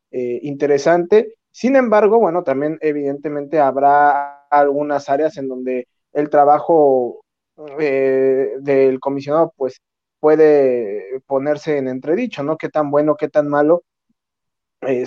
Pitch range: 135-180 Hz